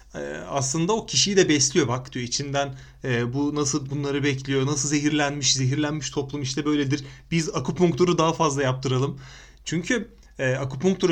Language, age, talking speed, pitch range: Turkish, 30-49, 145 wpm, 130-165 Hz